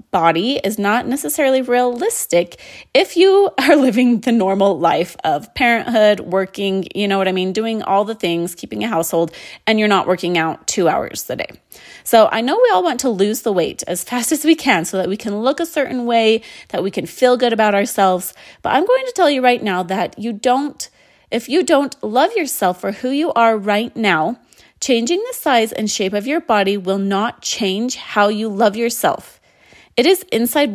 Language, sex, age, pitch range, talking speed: English, female, 30-49, 200-280 Hz, 205 wpm